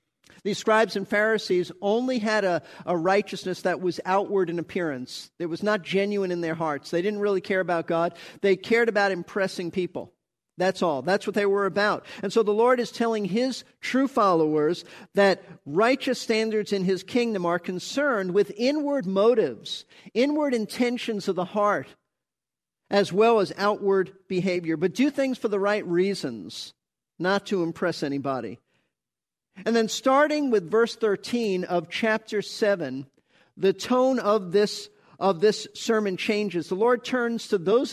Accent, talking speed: American, 160 wpm